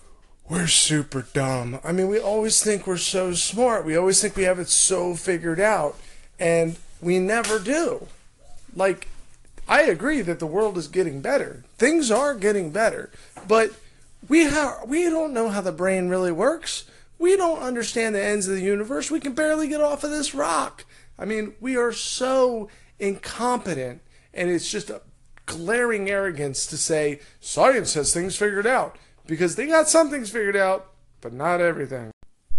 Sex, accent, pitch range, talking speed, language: male, American, 150-215 Hz, 170 wpm, English